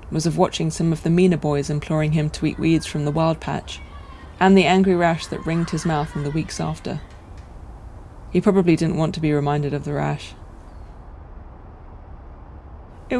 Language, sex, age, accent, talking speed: English, female, 30-49, British, 180 wpm